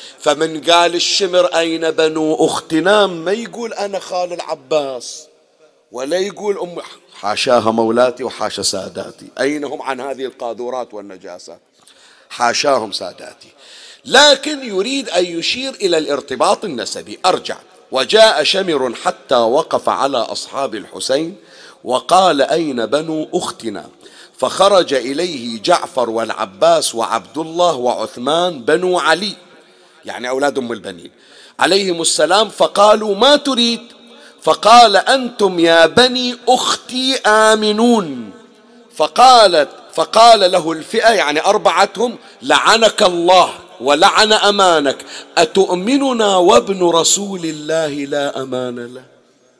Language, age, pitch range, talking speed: Arabic, 50-69, 150-225 Hz, 105 wpm